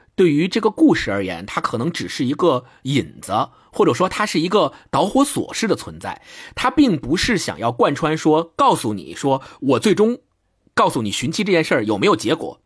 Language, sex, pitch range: Chinese, male, 120-200 Hz